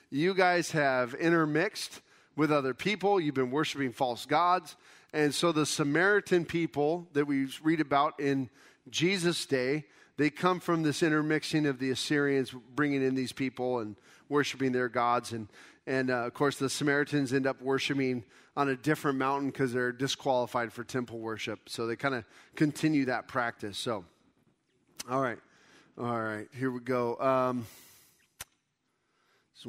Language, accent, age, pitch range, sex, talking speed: English, American, 40-59, 125-160 Hz, male, 160 wpm